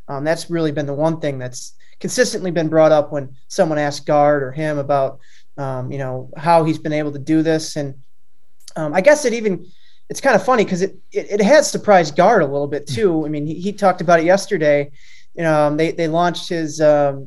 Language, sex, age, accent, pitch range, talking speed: English, male, 20-39, American, 145-180 Hz, 220 wpm